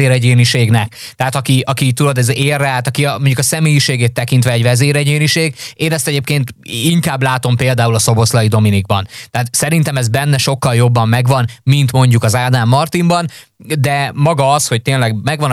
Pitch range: 120-145 Hz